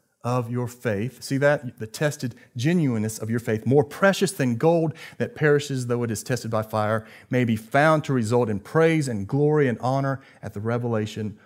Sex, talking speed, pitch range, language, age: male, 195 wpm, 115-155 Hz, English, 40-59